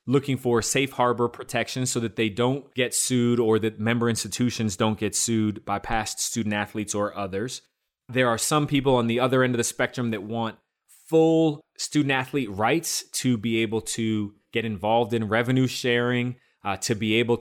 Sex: male